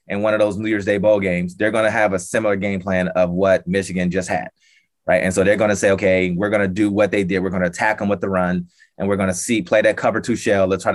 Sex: male